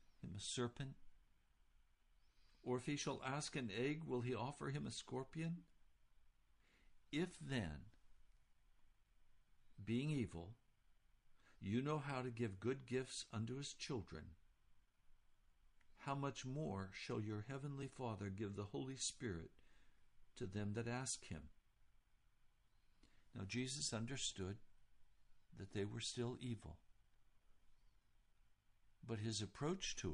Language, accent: English, American